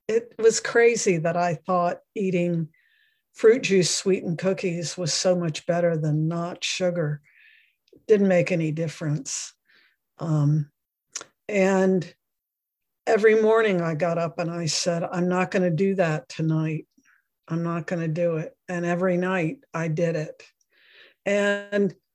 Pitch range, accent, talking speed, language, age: 170-205 Hz, American, 145 wpm, English, 60-79